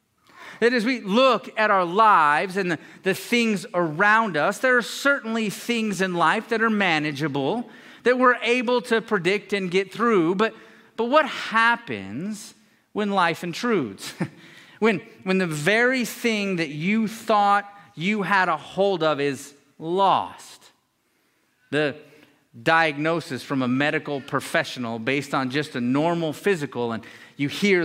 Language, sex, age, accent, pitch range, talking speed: English, male, 40-59, American, 150-220 Hz, 145 wpm